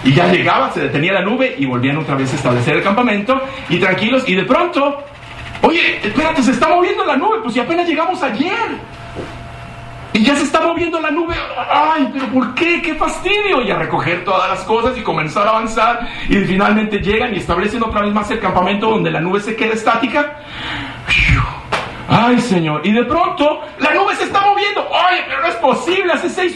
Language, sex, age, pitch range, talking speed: English, male, 50-69, 195-285 Hz, 200 wpm